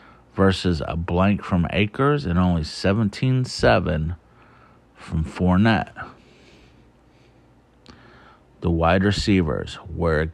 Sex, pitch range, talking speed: male, 80-100 Hz, 85 wpm